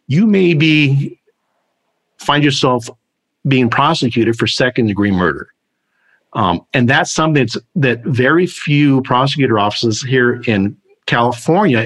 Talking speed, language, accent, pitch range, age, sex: 120 wpm, English, American, 120-150 Hz, 50-69, male